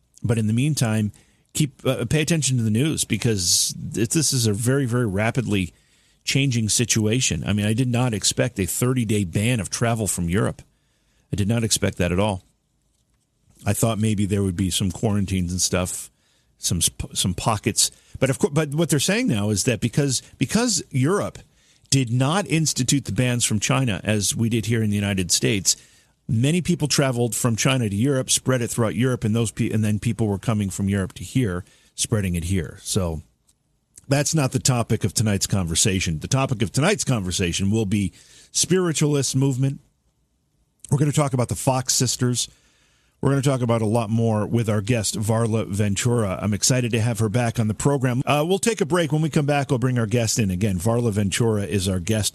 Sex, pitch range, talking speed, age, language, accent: male, 105-135 Hz, 200 wpm, 40-59, English, American